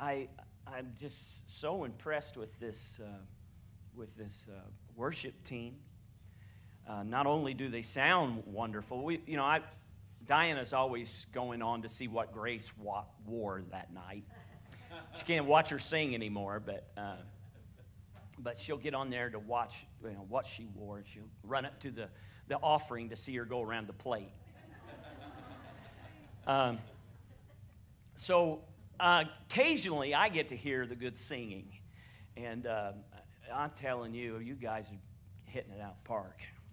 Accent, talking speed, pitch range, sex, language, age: American, 155 wpm, 100-130 Hz, male, English, 50-69